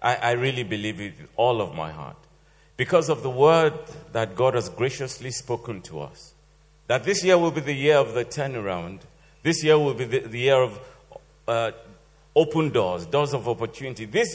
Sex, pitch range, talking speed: male, 120-155 Hz, 185 wpm